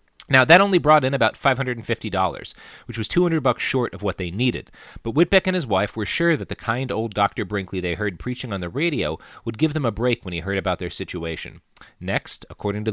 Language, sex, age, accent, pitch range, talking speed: English, male, 30-49, American, 100-130 Hz, 225 wpm